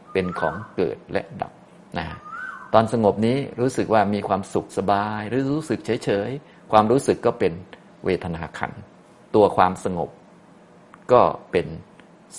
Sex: male